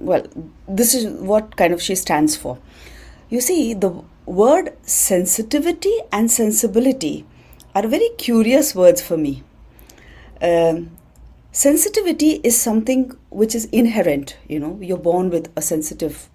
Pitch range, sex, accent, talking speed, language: 165-235 Hz, female, Indian, 130 wpm, English